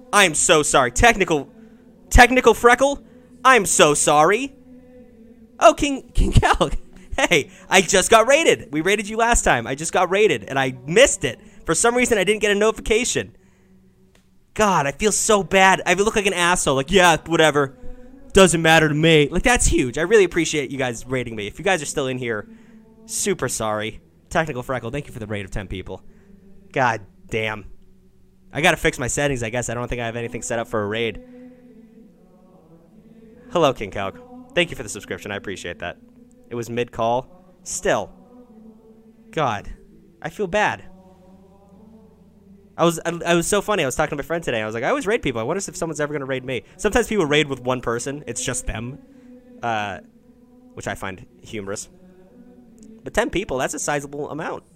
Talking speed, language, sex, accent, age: 195 wpm, English, male, American, 20-39